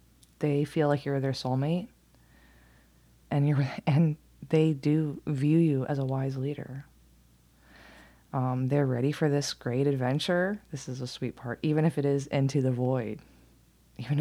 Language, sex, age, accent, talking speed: English, female, 20-39, American, 155 wpm